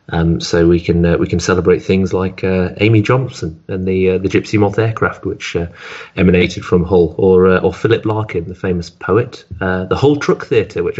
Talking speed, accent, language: 215 wpm, British, English